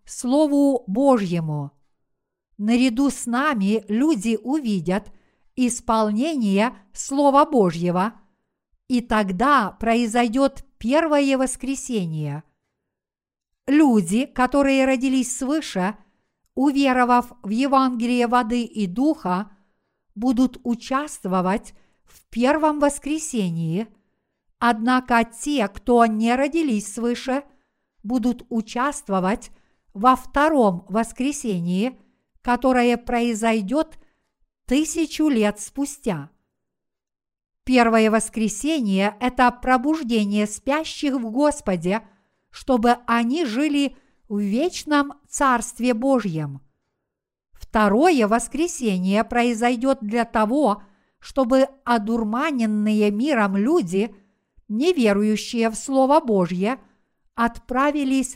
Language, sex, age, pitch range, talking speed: Russian, female, 50-69, 215-270 Hz, 75 wpm